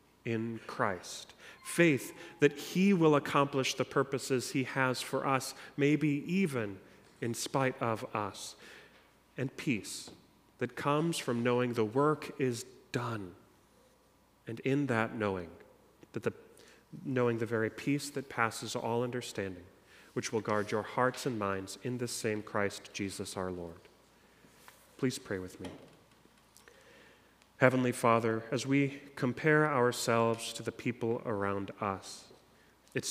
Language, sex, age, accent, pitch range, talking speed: English, male, 40-59, American, 110-140 Hz, 130 wpm